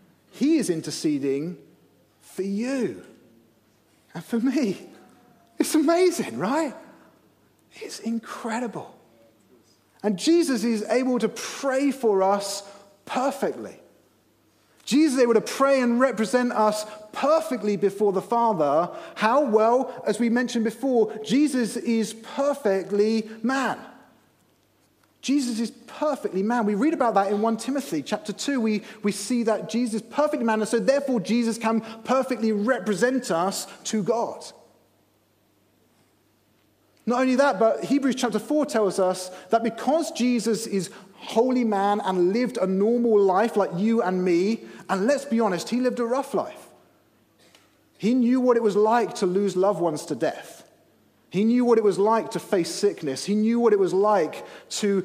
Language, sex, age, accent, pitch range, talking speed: English, male, 30-49, British, 195-245 Hz, 150 wpm